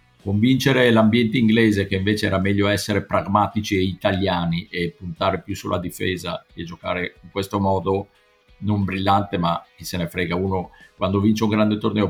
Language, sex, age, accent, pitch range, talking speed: Italian, male, 50-69, native, 90-105 Hz, 170 wpm